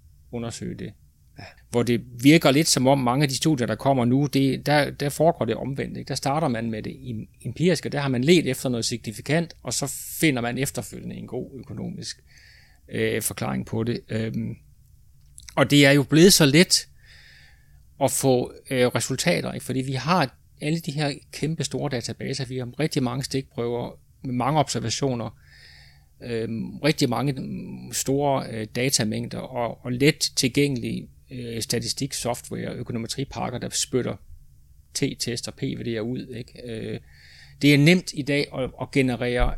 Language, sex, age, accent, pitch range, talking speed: Danish, male, 30-49, native, 115-140 Hz, 160 wpm